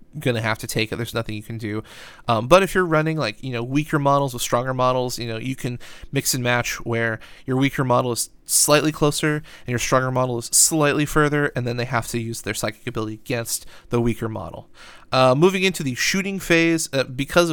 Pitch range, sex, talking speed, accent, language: 120-150 Hz, male, 225 wpm, American, English